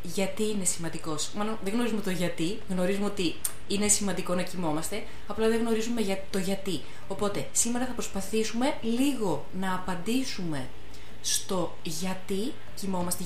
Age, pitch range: 20-39, 170-225 Hz